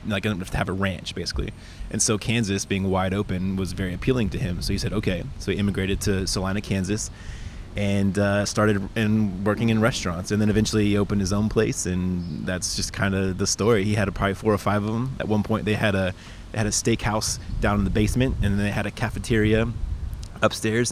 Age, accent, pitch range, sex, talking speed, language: 20-39, American, 95-110 Hz, male, 235 wpm, English